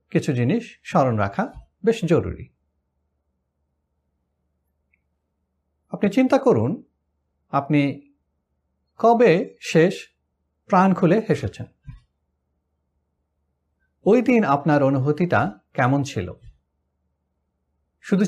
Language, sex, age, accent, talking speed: Bengali, male, 50-69, native, 70 wpm